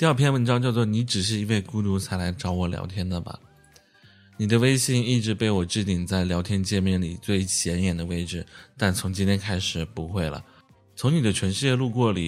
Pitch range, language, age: 90-115 Hz, Chinese, 20-39